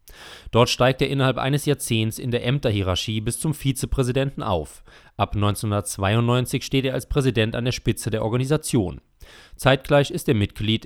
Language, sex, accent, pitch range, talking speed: German, male, German, 100-130 Hz, 155 wpm